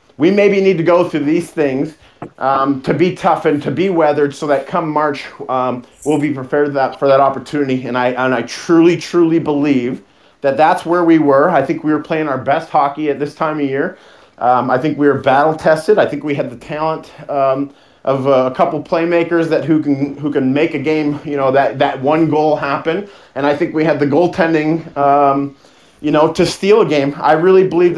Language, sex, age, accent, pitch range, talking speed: English, male, 30-49, American, 135-155 Hz, 220 wpm